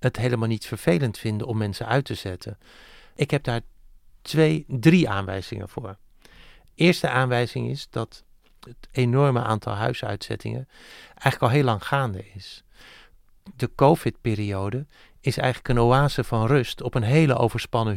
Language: Dutch